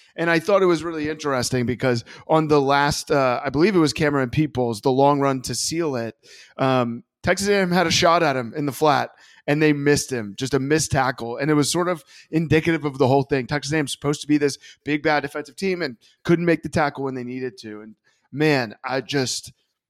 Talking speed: 230 wpm